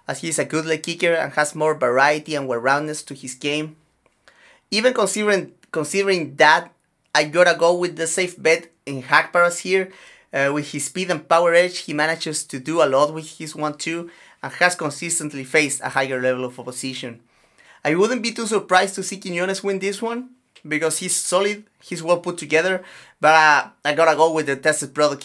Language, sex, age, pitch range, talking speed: English, male, 30-49, 140-170 Hz, 190 wpm